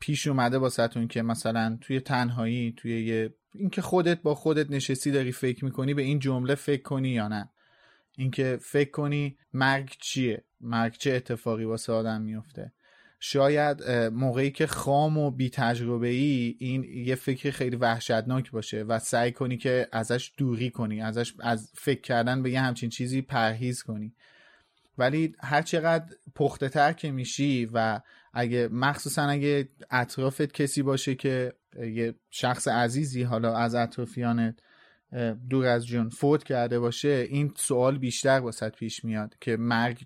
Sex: male